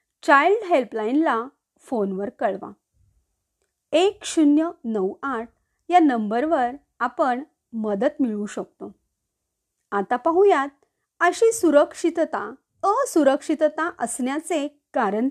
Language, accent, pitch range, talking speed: Marathi, native, 240-335 Hz, 65 wpm